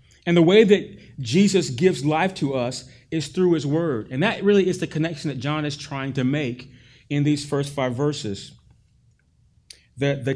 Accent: American